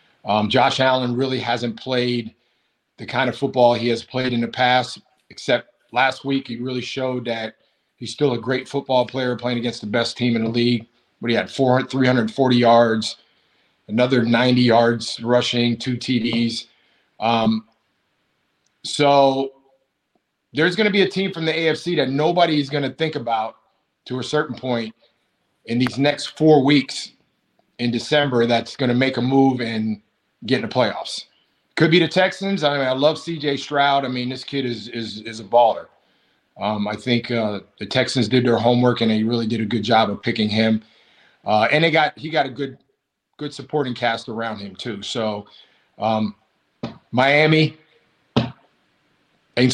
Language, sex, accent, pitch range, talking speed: English, male, American, 115-135 Hz, 175 wpm